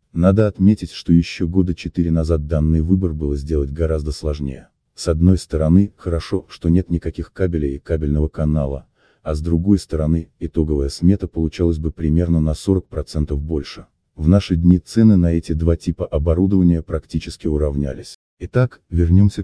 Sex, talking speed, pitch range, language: male, 150 wpm, 75-90 Hz, Russian